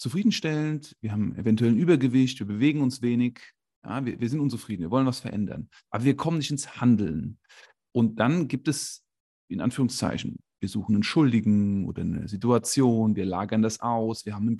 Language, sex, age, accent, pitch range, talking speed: German, male, 40-59, German, 105-140 Hz, 180 wpm